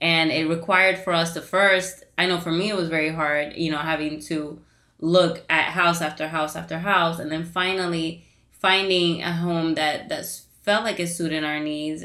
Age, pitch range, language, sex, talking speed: 20-39, 160-185 Hz, English, female, 200 wpm